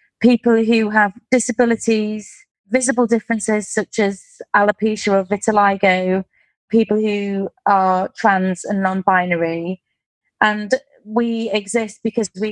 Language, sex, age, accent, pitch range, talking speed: English, female, 30-49, British, 195-220 Hz, 105 wpm